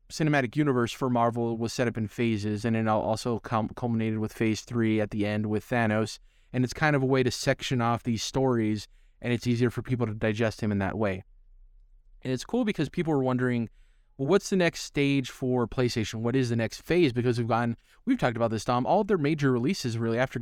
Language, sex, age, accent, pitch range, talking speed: English, male, 20-39, American, 110-140 Hz, 225 wpm